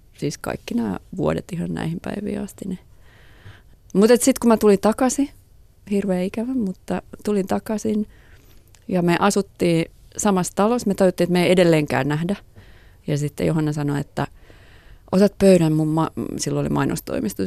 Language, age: Finnish, 30-49